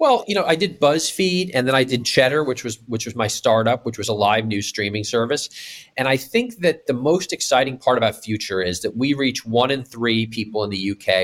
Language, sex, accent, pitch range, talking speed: English, male, American, 105-130 Hz, 240 wpm